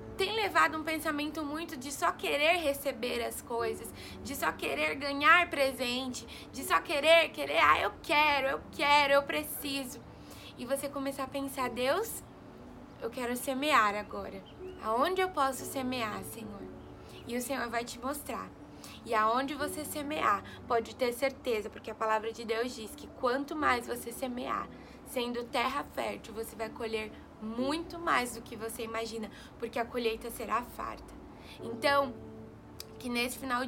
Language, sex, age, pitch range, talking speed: Portuguese, female, 20-39, 225-280 Hz, 155 wpm